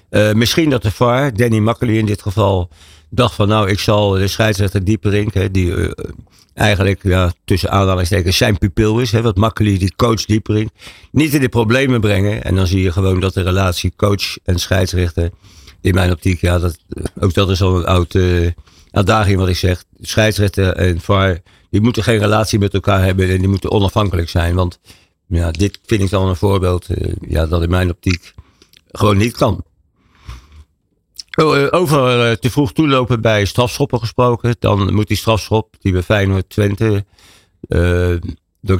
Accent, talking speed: Dutch, 180 wpm